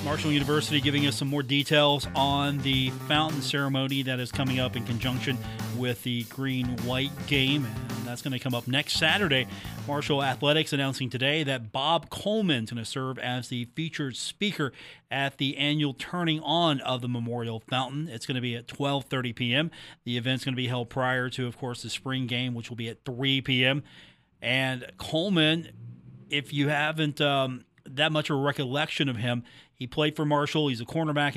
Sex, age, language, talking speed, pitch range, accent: male, 30-49, English, 190 wpm, 125-145 Hz, American